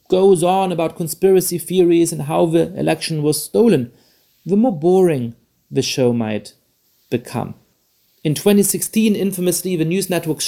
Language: English